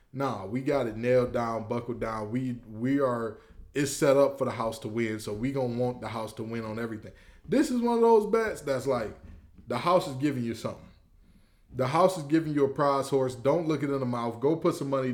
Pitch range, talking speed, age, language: 125-145 Hz, 240 wpm, 20-39, English